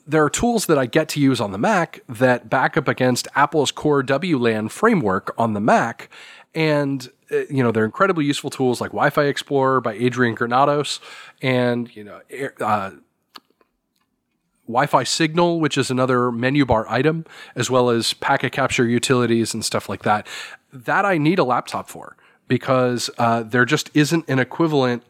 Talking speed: 165 wpm